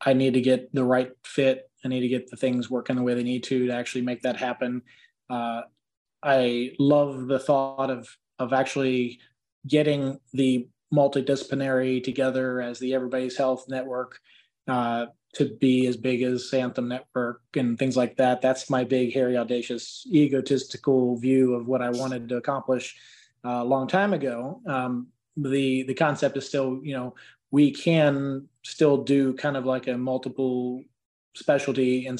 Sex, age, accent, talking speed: male, 20-39, American, 165 wpm